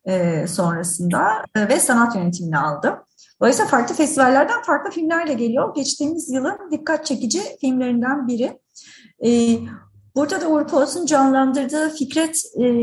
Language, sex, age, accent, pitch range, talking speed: Turkish, female, 30-49, native, 205-270 Hz, 110 wpm